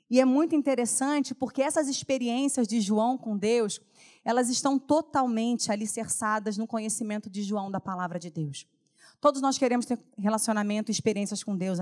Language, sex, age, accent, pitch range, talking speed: Portuguese, female, 30-49, Brazilian, 180-260 Hz, 165 wpm